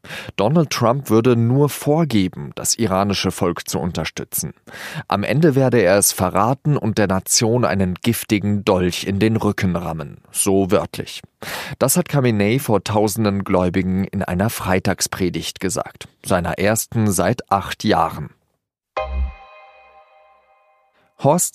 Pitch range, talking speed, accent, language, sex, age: 95-125 Hz, 125 wpm, German, German, male, 40-59